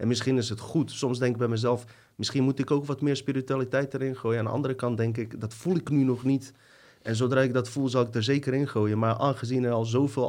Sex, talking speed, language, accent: male, 275 wpm, Dutch, Dutch